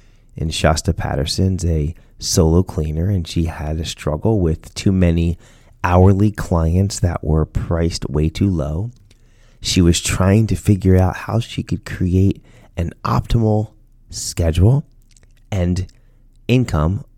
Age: 30-49